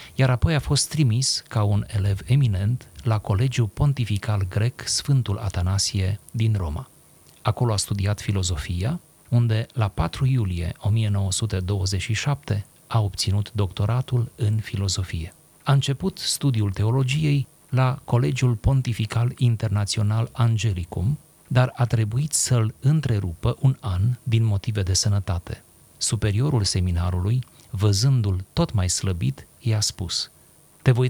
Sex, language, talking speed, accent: male, Romanian, 120 wpm, native